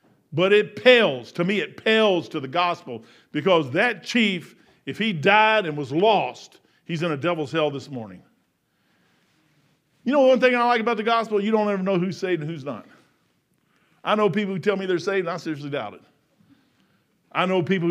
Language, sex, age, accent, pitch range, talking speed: English, male, 50-69, American, 165-235 Hz, 200 wpm